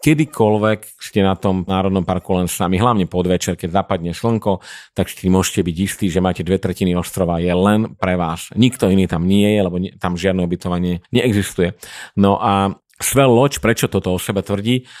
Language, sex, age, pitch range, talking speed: Slovak, male, 40-59, 90-105 Hz, 185 wpm